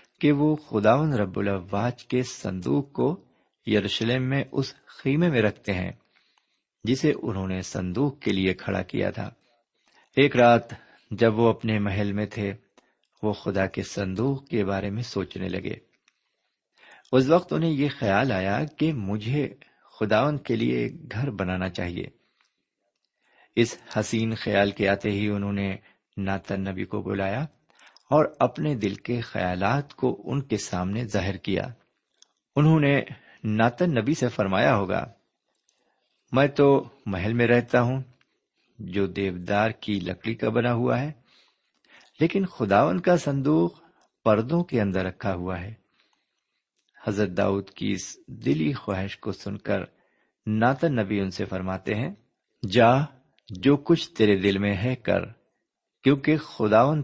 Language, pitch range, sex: Urdu, 100-135 Hz, male